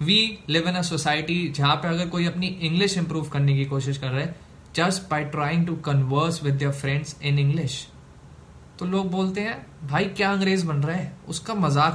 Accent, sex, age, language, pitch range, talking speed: native, male, 20-39, Hindi, 140-180 Hz, 200 wpm